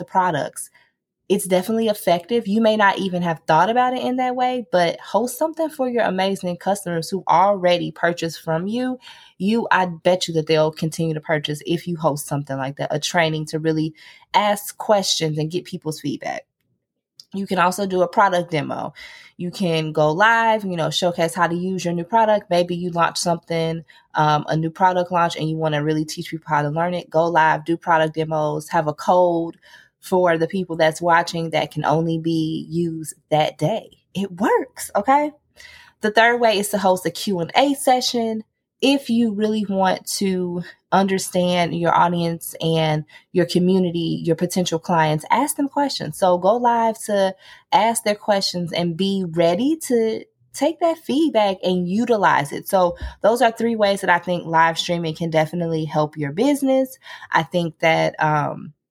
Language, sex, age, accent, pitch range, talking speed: English, female, 20-39, American, 165-215 Hz, 180 wpm